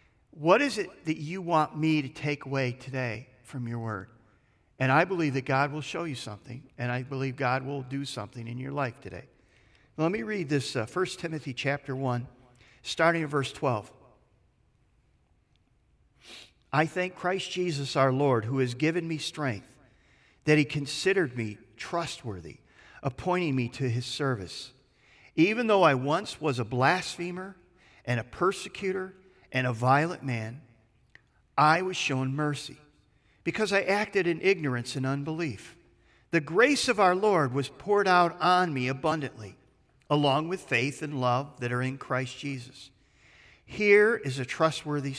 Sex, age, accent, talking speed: male, 50-69, American, 155 wpm